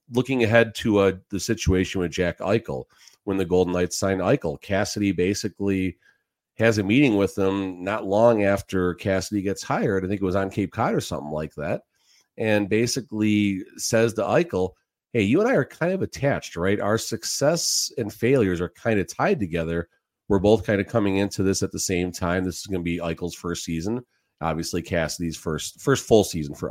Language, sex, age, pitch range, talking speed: English, male, 40-59, 85-105 Hz, 200 wpm